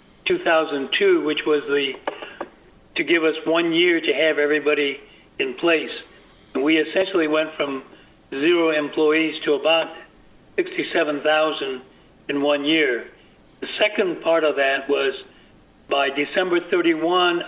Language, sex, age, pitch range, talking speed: English, male, 60-79, 145-170 Hz, 120 wpm